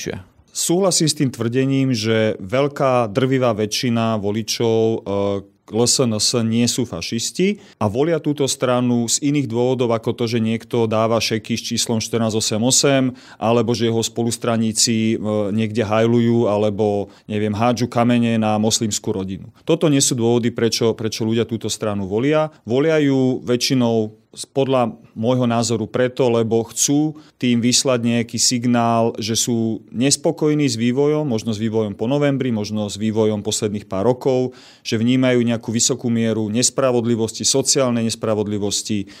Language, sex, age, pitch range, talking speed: Slovak, male, 40-59, 110-130 Hz, 140 wpm